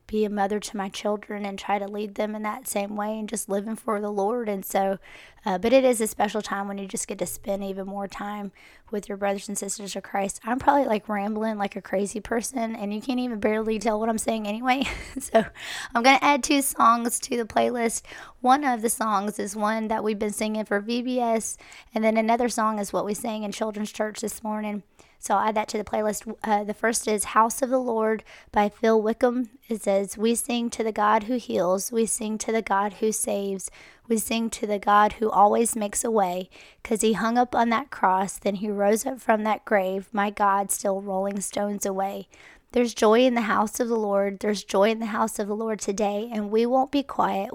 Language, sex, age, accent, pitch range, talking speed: English, female, 20-39, American, 200-230 Hz, 235 wpm